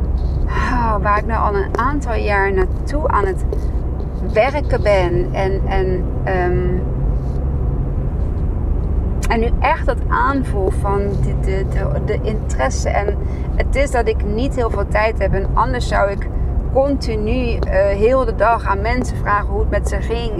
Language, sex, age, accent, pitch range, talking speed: Dutch, female, 30-49, Dutch, 70-105 Hz, 145 wpm